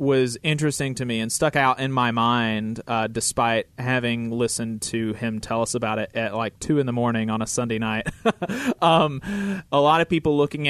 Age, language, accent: 30-49, English, American